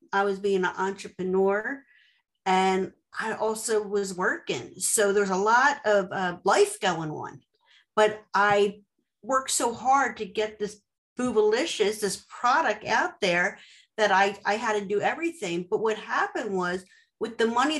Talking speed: 155 wpm